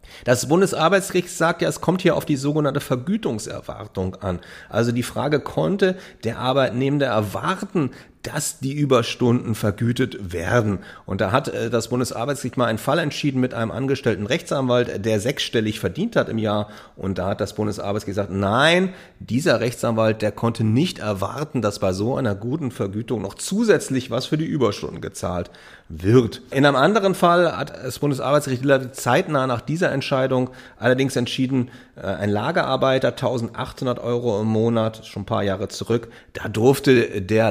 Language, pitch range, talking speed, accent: German, 110-140 Hz, 155 wpm, German